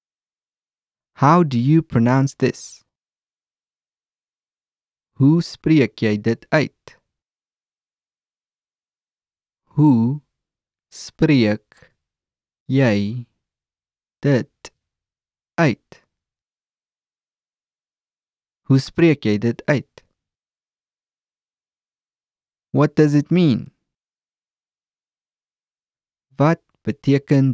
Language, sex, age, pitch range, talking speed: English, male, 30-49, 110-135 Hz, 50 wpm